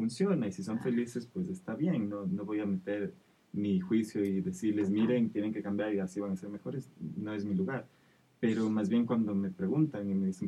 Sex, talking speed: male, 230 wpm